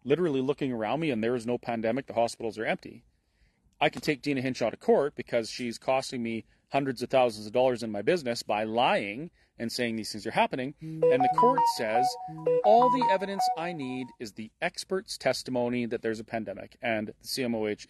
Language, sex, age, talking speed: English, male, 30-49, 200 wpm